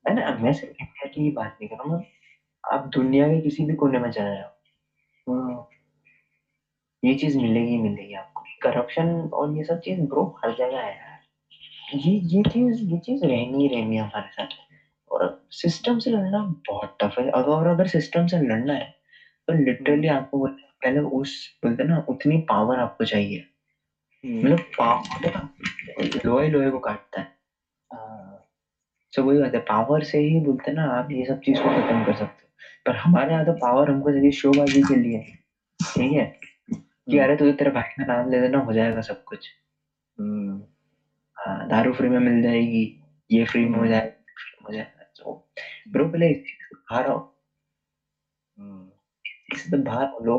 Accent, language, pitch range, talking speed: native, Hindi, 115-160 Hz, 130 wpm